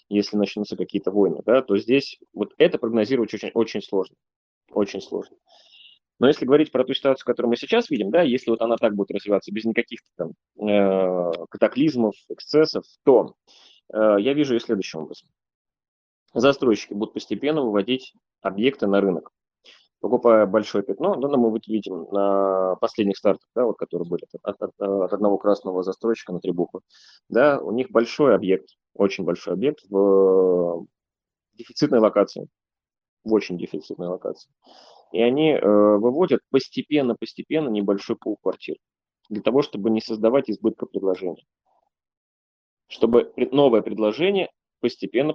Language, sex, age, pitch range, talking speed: Russian, male, 20-39, 100-125 Hz, 145 wpm